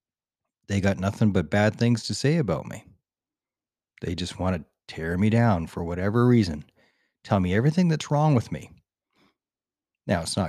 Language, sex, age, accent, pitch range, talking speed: English, male, 40-59, American, 90-120 Hz, 170 wpm